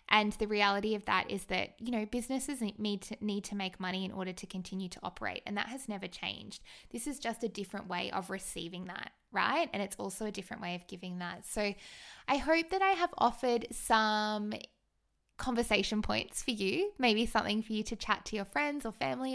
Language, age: English, 20-39